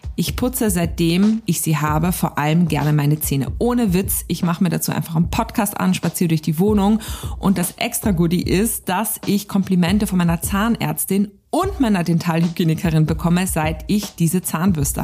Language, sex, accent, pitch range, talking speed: German, female, German, 175-225 Hz, 175 wpm